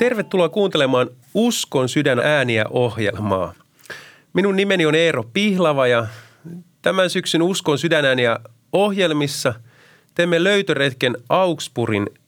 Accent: native